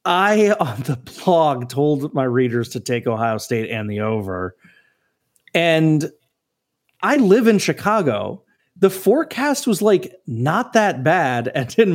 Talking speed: 140 wpm